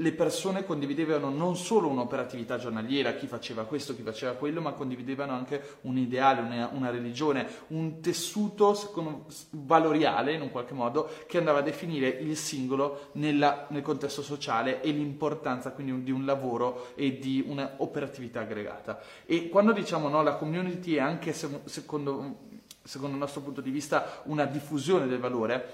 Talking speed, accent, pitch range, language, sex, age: 155 wpm, native, 135-165 Hz, Italian, male, 30-49